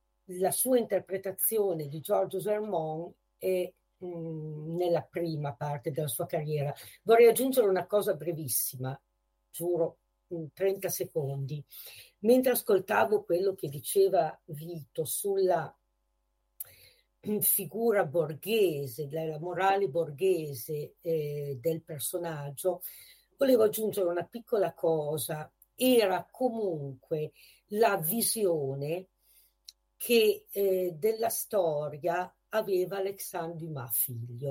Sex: female